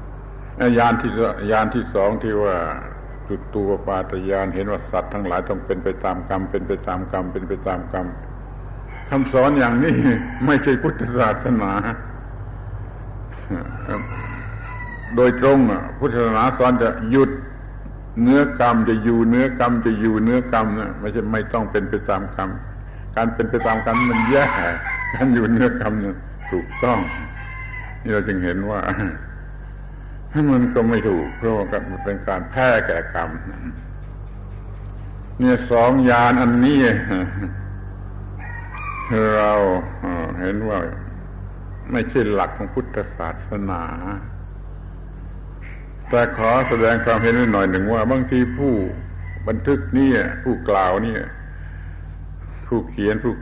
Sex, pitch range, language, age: male, 95-120 Hz, Thai, 70-89